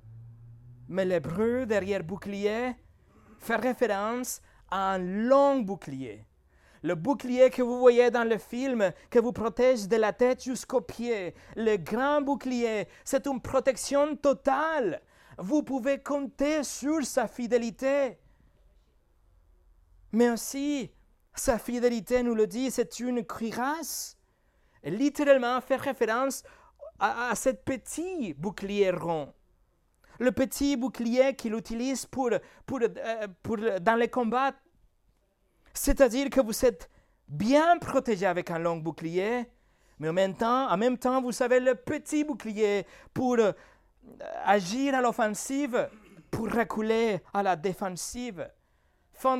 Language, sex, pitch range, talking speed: French, male, 195-265 Hz, 125 wpm